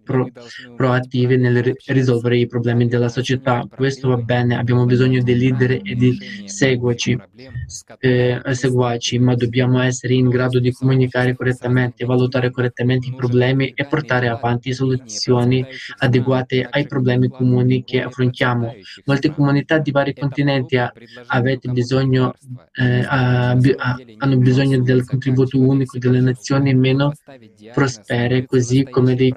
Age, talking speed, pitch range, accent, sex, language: 20-39, 120 wpm, 125-135 Hz, native, male, Italian